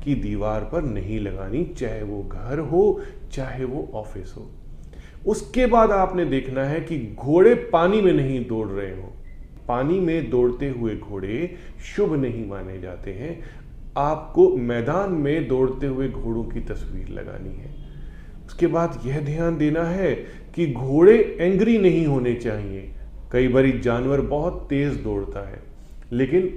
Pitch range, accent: 110-165 Hz, native